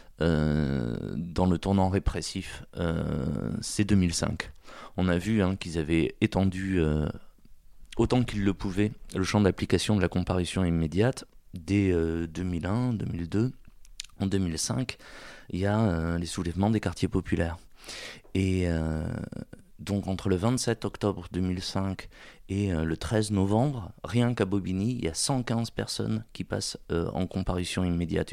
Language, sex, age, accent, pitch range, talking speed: French, male, 30-49, French, 85-105 Hz, 145 wpm